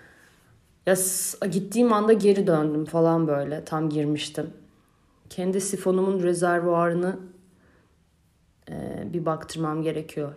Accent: native